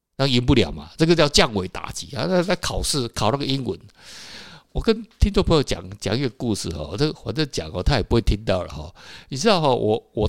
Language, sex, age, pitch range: Chinese, male, 60-79, 100-155 Hz